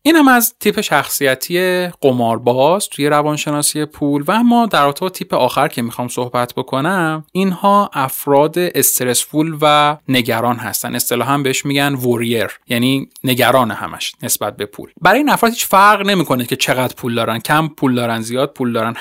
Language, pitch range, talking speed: Persian, 130-165 Hz, 160 wpm